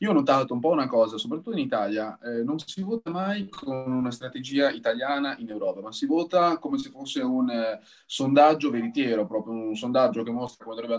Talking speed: 205 wpm